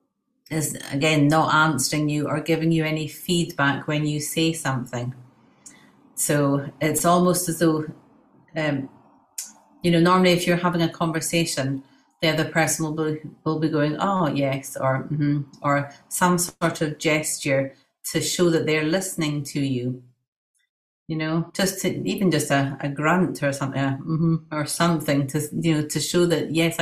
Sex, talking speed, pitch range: female, 165 wpm, 145-165 Hz